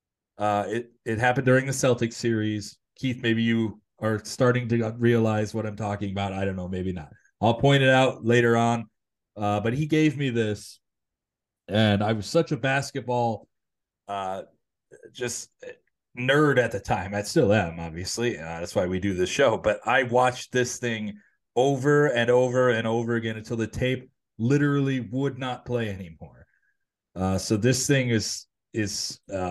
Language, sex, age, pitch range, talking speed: English, male, 30-49, 105-130 Hz, 175 wpm